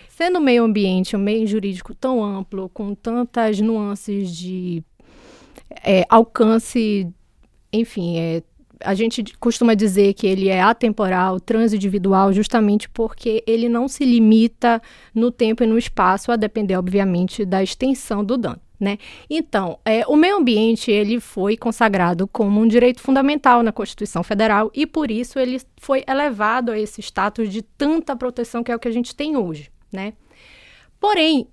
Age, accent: 20-39, Brazilian